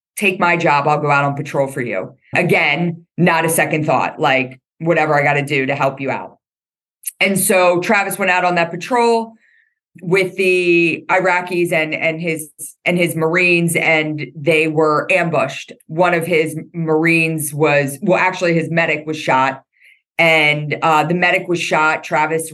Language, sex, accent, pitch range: English, female, American, 150-175 Hz